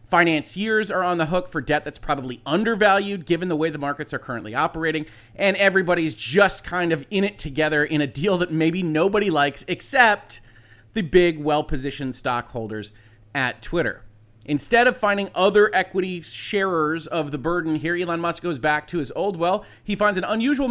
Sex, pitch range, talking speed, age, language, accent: male, 140-190 Hz, 180 wpm, 30-49, English, American